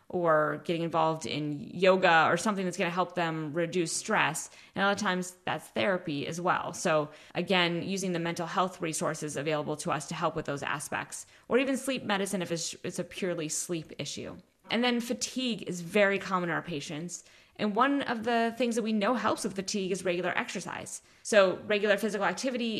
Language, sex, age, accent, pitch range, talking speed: English, female, 20-39, American, 165-200 Hz, 195 wpm